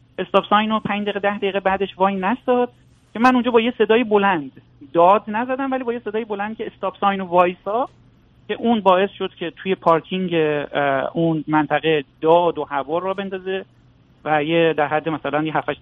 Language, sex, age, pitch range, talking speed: Persian, male, 40-59, 155-195 Hz, 180 wpm